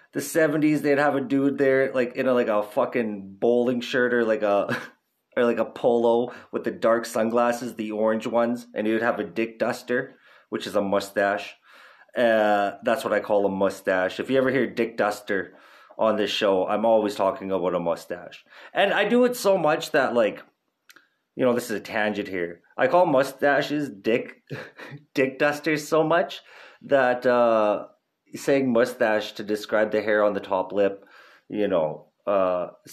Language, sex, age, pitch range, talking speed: English, male, 30-49, 110-150 Hz, 180 wpm